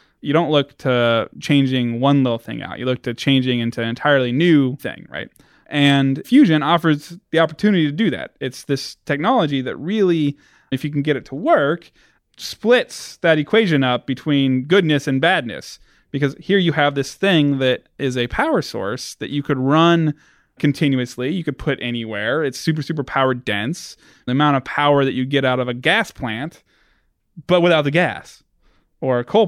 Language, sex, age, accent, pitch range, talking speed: English, male, 20-39, American, 125-150 Hz, 185 wpm